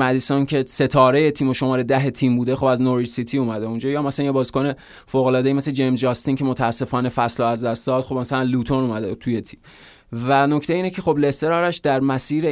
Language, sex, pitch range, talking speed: Persian, male, 120-140 Hz, 210 wpm